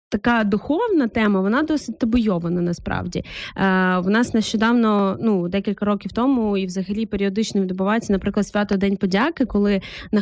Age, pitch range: 20-39, 195-230 Hz